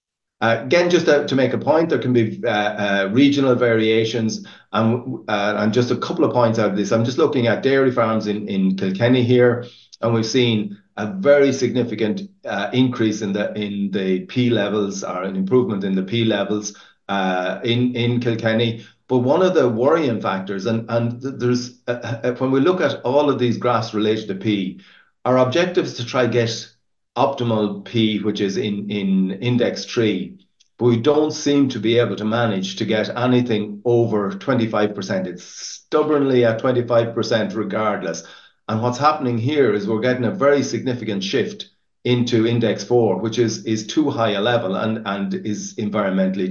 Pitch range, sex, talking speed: 105-125 Hz, male, 180 wpm